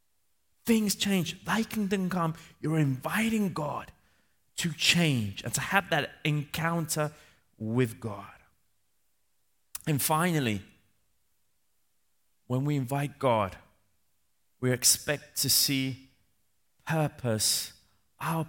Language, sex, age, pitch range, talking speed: Italian, male, 30-49, 110-185 Hz, 95 wpm